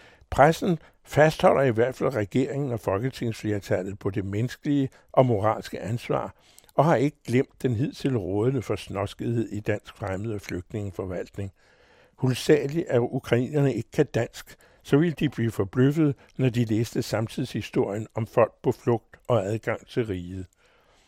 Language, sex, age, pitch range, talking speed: Danish, male, 60-79, 110-145 Hz, 145 wpm